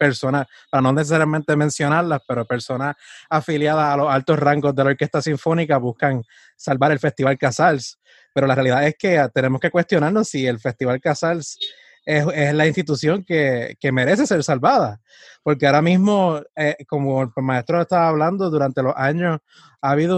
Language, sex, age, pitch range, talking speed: Spanish, male, 20-39, 135-165 Hz, 165 wpm